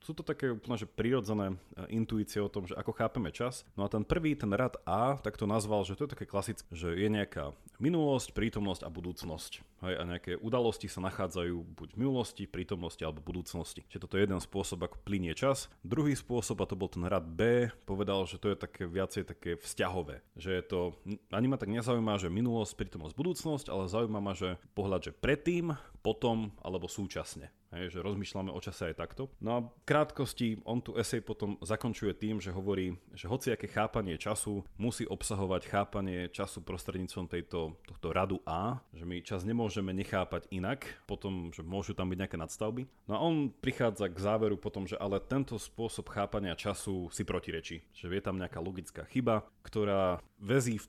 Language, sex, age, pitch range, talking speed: Slovak, male, 30-49, 95-115 Hz, 190 wpm